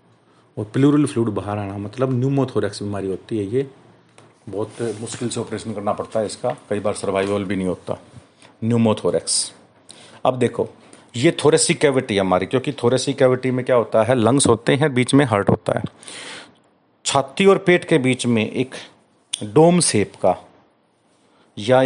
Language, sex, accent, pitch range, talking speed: Hindi, male, native, 115-155 Hz, 160 wpm